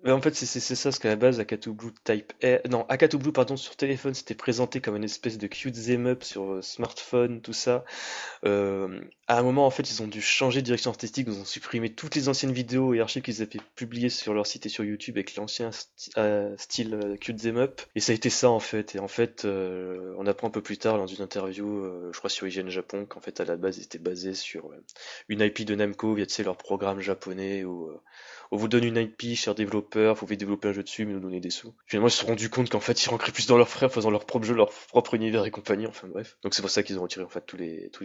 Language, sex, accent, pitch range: French, male, French, 100-125 Hz